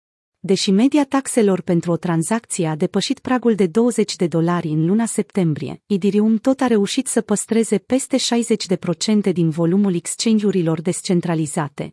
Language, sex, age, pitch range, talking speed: Romanian, female, 30-49, 180-225 Hz, 140 wpm